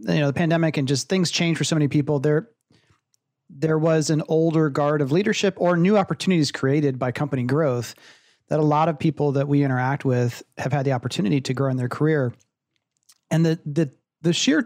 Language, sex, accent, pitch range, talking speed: English, male, American, 130-165 Hz, 205 wpm